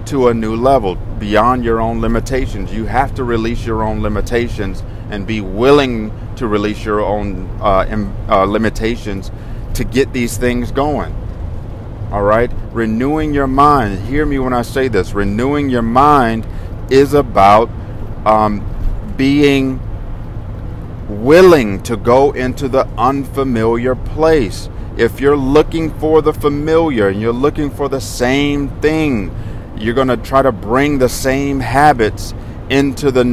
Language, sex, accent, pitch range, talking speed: English, male, American, 105-135 Hz, 140 wpm